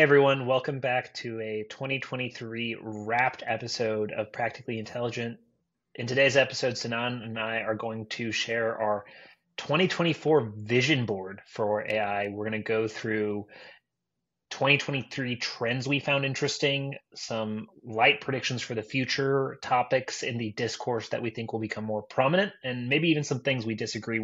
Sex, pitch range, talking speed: male, 110-135 Hz, 150 wpm